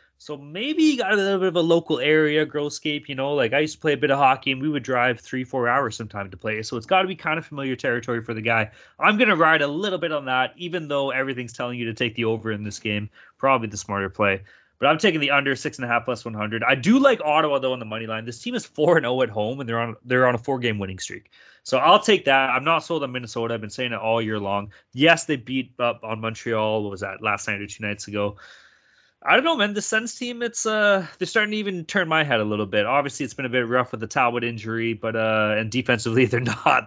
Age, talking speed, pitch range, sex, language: 20-39, 275 wpm, 115-160 Hz, male, English